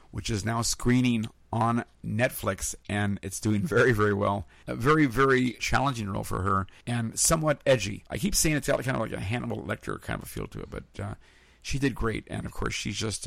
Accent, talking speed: American, 215 wpm